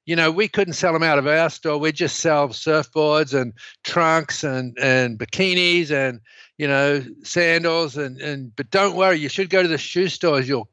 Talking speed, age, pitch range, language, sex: 200 wpm, 60-79, 140-165 Hz, English, male